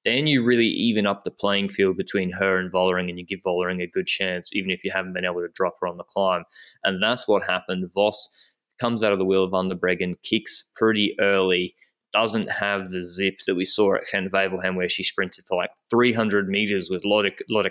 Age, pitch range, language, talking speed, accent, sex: 20-39, 95-105 Hz, English, 215 wpm, Australian, male